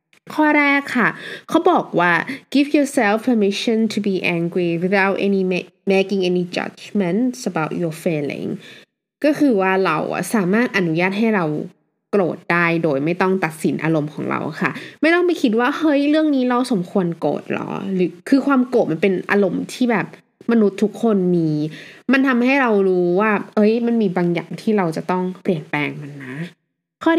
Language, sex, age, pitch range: Thai, female, 20-39, 170-230 Hz